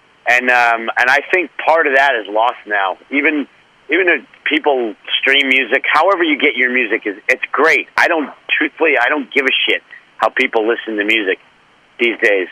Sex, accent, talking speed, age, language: male, American, 190 wpm, 50-69, English